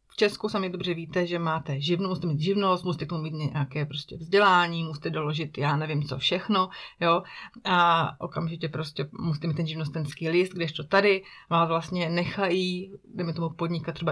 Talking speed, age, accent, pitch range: 175 wpm, 30-49, native, 155-180 Hz